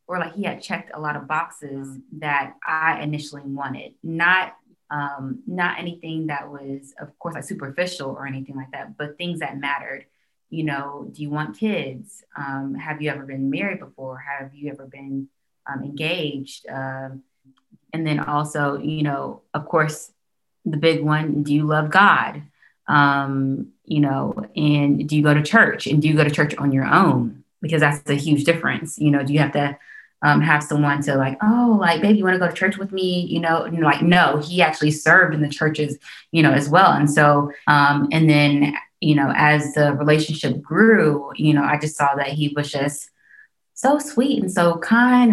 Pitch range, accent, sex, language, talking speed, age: 140-165 Hz, American, female, English, 200 wpm, 20-39